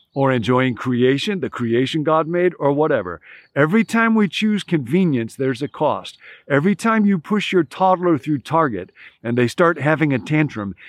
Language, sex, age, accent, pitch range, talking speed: English, male, 50-69, American, 130-175 Hz, 170 wpm